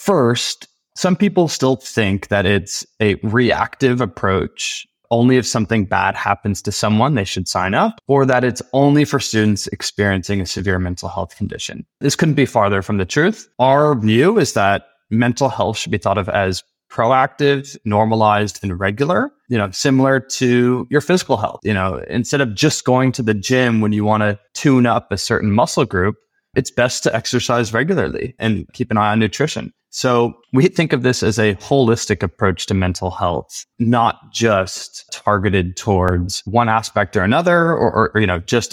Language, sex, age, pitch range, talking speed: English, male, 20-39, 95-125 Hz, 180 wpm